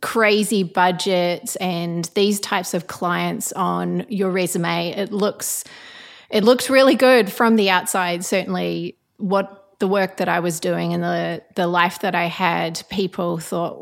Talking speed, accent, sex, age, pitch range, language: 155 wpm, Australian, female, 30-49, 175-210 Hz, English